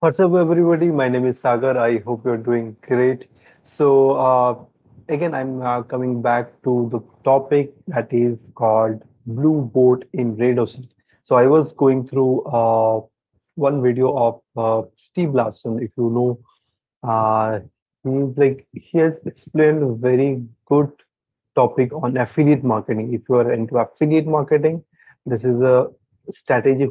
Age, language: 30-49, English